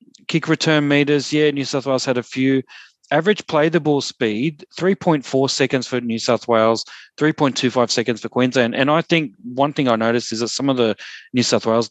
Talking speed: 195 wpm